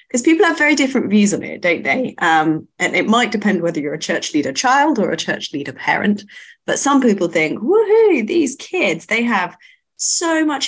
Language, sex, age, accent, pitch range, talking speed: English, female, 30-49, British, 170-250 Hz, 200 wpm